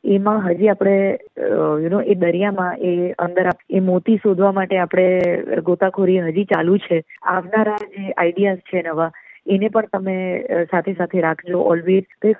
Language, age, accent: Gujarati, 20-39, native